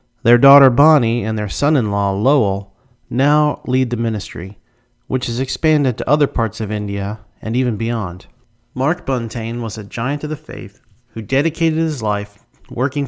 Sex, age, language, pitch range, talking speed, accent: male, 40-59, English, 105-130 Hz, 160 wpm, American